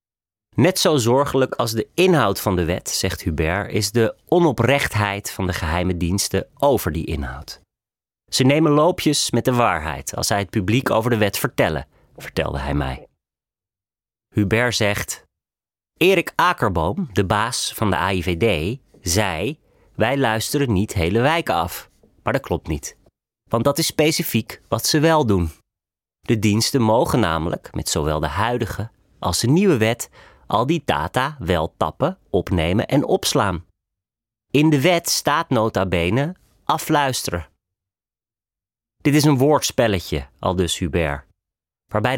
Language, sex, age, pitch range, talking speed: Dutch, male, 30-49, 90-130 Hz, 140 wpm